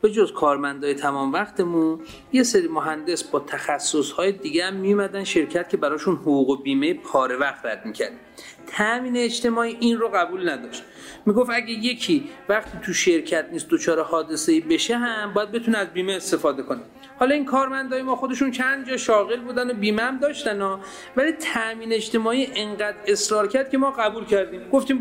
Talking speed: 165 wpm